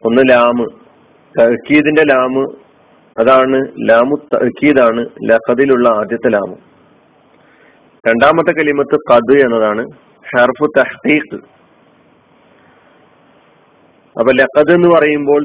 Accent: native